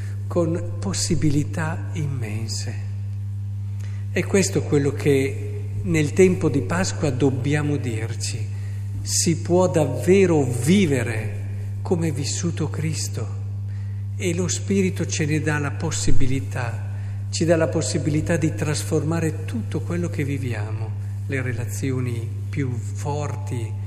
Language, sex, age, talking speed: Italian, male, 50-69, 110 wpm